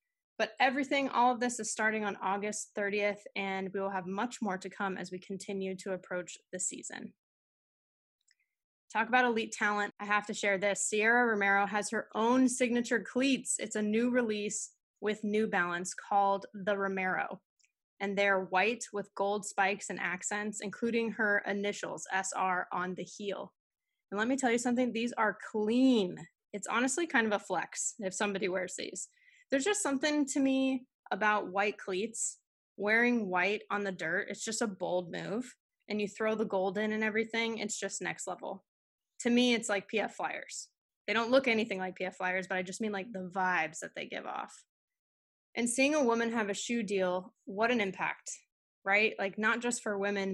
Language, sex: English, female